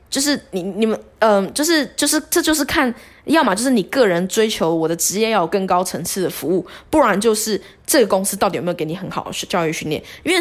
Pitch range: 195-290 Hz